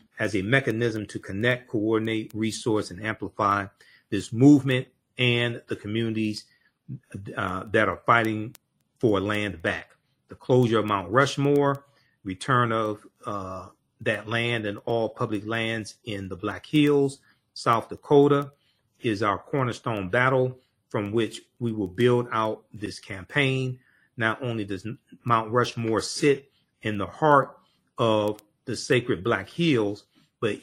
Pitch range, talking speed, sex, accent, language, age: 105-125 Hz, 135 wpm, male, American, English, 40-59